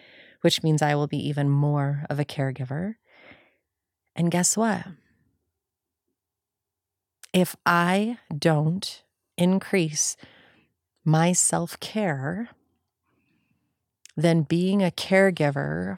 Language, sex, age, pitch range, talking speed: English, female, 30-49, 135-175 Hz, 85 wpm